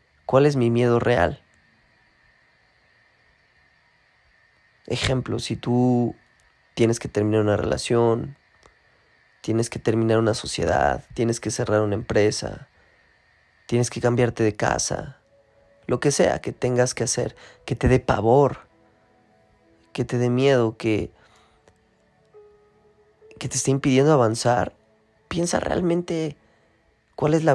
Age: 20-39